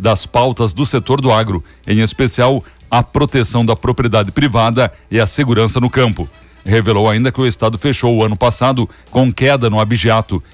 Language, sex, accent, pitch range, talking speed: Portuguese, male, Brazilian, 110-130 Hz, 175 wpm